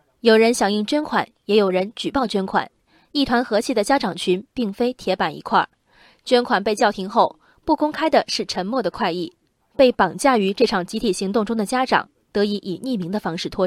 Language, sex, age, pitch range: Chinese, female, 20-39, 190-255 Hz